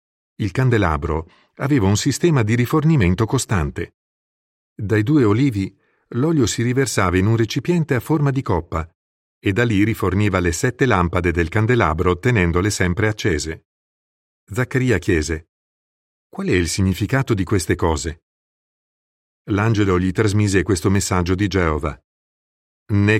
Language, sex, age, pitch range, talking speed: Italian, male, 50-69, 90-115 Hz, 130 wpm